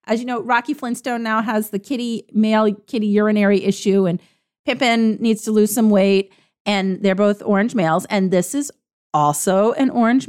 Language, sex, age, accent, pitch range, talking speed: English, female, 40-59, American, 205-265 Hz, 180 wpm